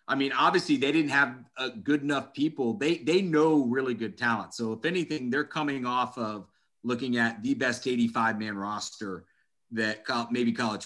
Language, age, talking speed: English, 30-49, 175 wpm